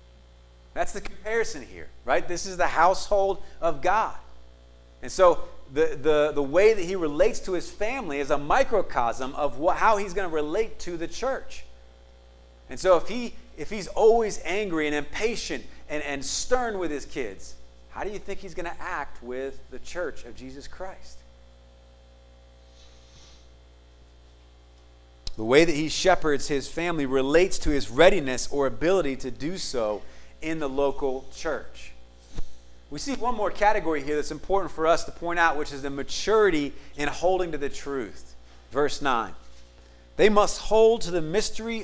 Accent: American